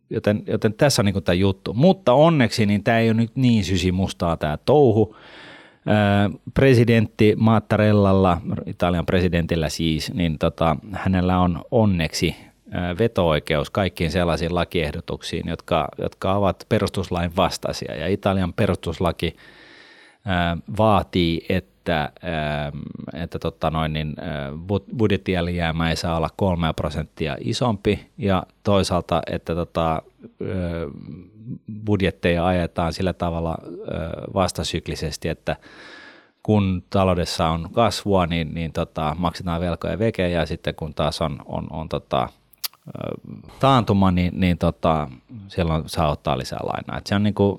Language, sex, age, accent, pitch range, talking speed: Finnish, male, 30-49, native, 80-105 Hz, 120 wpm